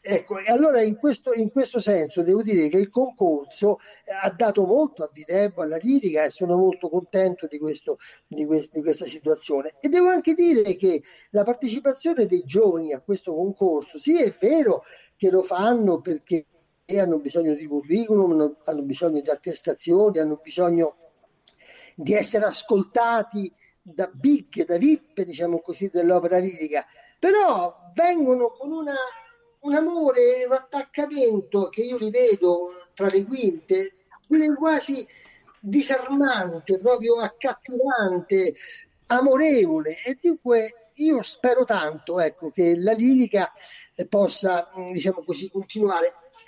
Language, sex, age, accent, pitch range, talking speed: Italian, male, 50-69, native, 180-285 Hz, 135 wpm